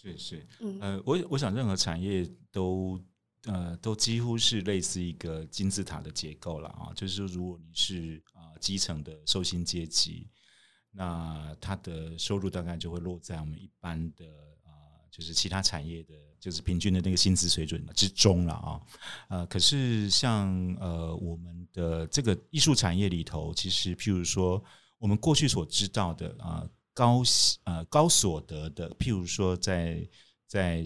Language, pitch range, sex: Chinese, 80-100 Hz, male